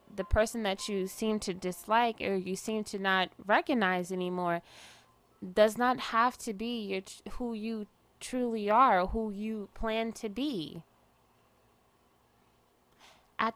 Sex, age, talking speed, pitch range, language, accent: female, 20-39, 140 wpm, 185-220 Hz, English, American